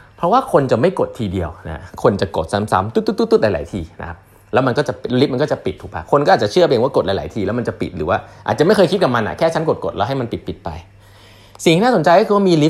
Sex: male